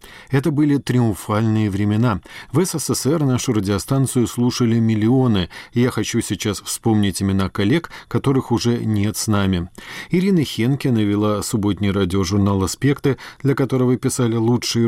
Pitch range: 100-130 Hz